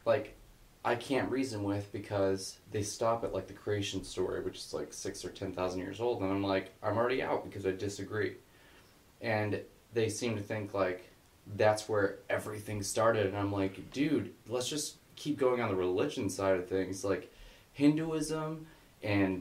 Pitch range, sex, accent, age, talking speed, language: 100-130 Hz, male, American, 20-39, 180 wpm, English